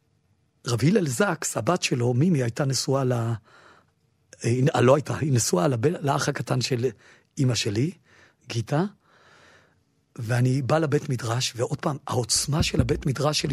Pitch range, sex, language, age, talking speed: 120-150 Hz, male, Hebrew, 50-69, 140 wpm